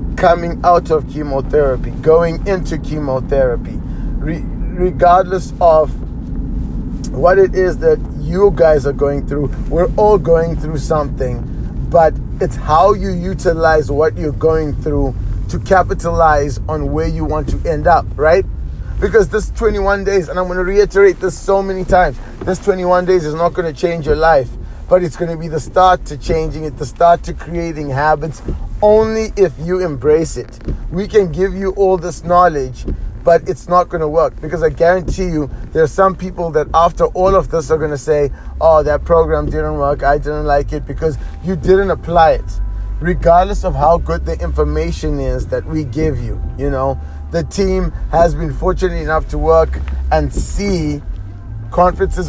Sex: male